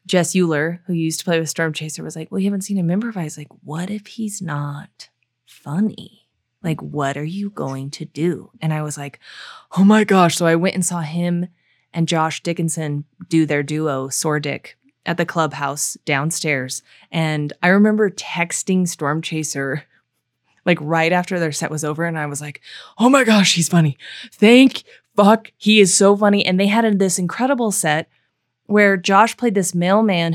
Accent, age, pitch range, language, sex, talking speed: American, 20-39, 150-190 Hz, English, female, 185 wpm